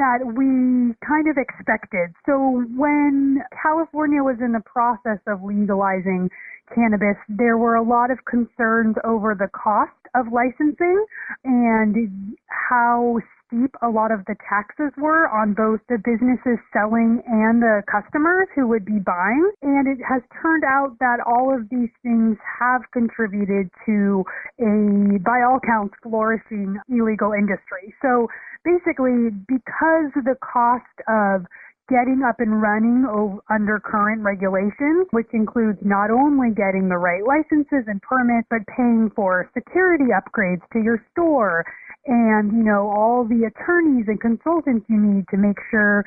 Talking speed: 145 wpm